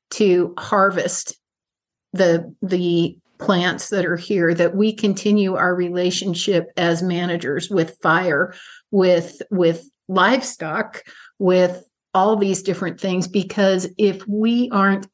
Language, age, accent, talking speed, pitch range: English, 50-69, American, 115 wpm, 180-205 Hz